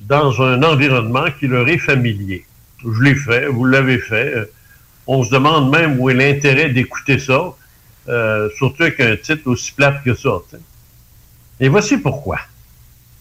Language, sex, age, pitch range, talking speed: French, male, 60-79, 115-150 Hz, 155 wpm